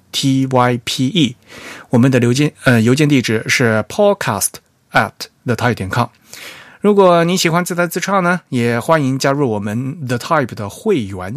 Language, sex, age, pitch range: Chinese, male, 30-49, 110-145 Hz